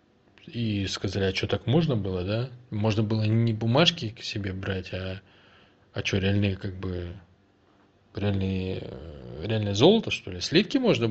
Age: 20-39